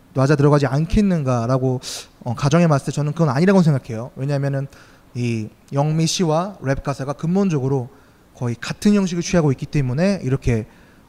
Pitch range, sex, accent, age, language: 130-175 Hz, male, native, 20-39, Korean